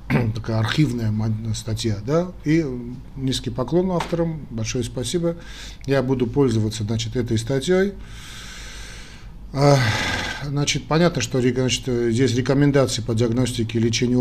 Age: 40-59